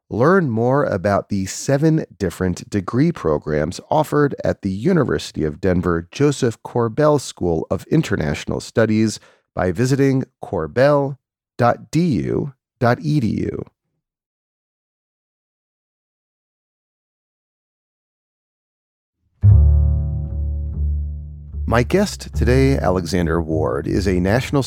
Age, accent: 40-59, American